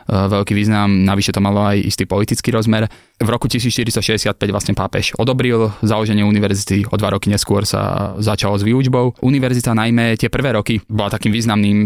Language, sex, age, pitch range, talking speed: Slovak, male, 20-39, 100-110 Hz, 165 wpm